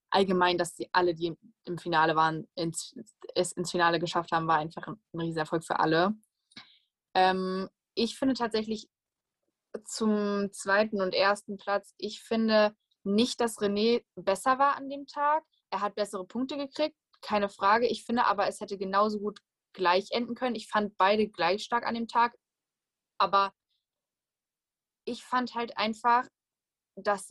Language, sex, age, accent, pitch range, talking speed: German, female, 20-39, German, 190-240 Hz, 155 wpm